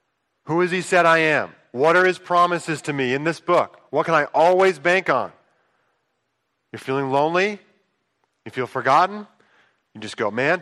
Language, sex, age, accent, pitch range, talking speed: English, male, 40-59, American, 135-175 Hz, 175 wpm